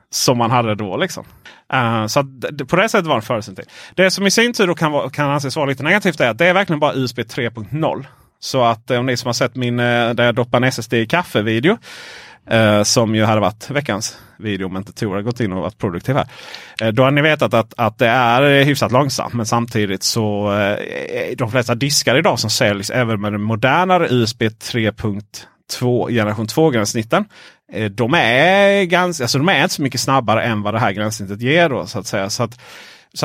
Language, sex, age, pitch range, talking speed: Swedish, male, 30-49, 110-160 Hz, 215 wpm